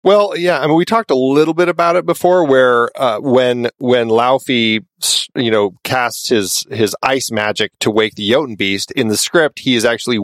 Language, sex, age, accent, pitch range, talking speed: English, male, 40-59, American, 105-135 Hz, 205 wpm